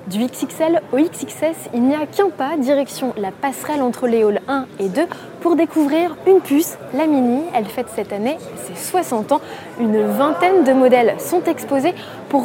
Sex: female